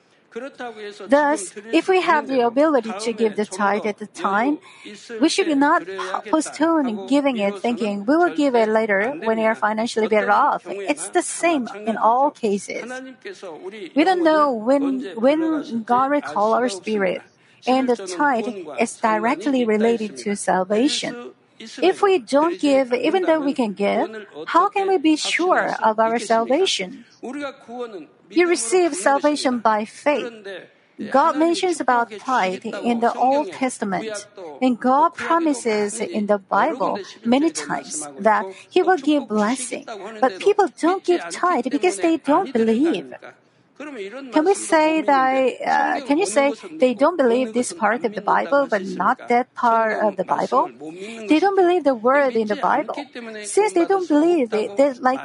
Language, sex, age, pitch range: Korean, female, 40-59, 225-315 Hz